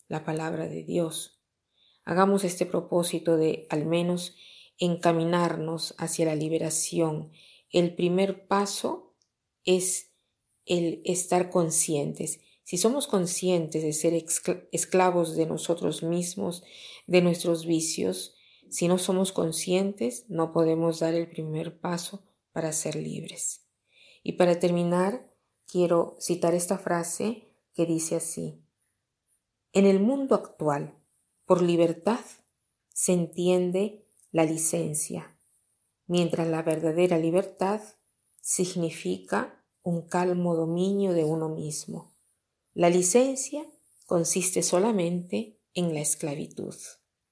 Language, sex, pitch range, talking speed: Spanish, female, 160-185 Hz, 105 wpm